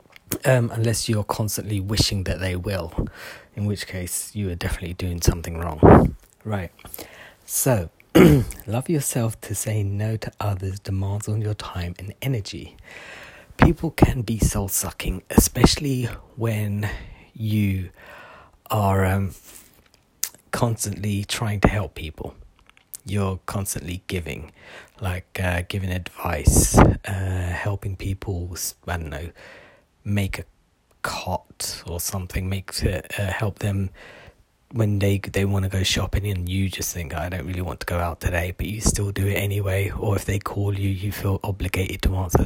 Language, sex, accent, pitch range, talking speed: English, male, British, 90-105 Hz, 145 wpm